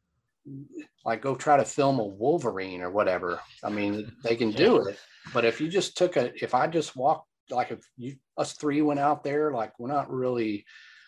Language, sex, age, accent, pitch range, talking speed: English, male, 40-59, American, 110-145 Hz, 200 wpm